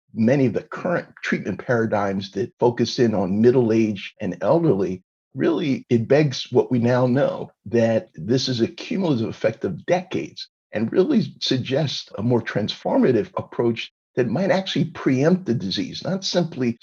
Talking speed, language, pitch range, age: 155 wpm, English, 115-145 Hz, 50-69